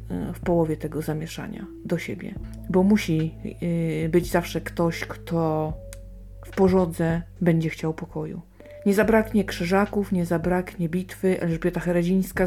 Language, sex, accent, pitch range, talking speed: Polish, female, native, 175-205 Hz, 120 wpm